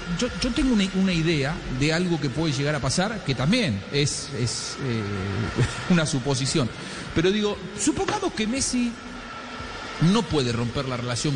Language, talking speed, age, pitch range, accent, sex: English, 160 wpm, 40-59, 130-175 Hz, Argentinian, male